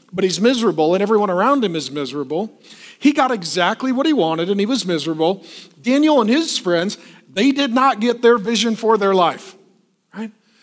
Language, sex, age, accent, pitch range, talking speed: English, male, 50-69, American, 185-245 Hz, 185 wpm